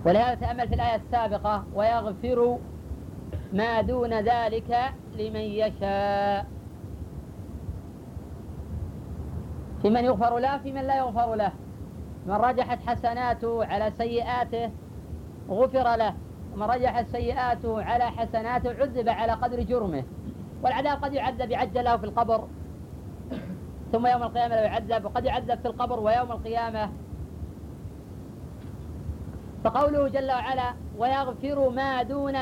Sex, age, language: female, 40-59, Arabic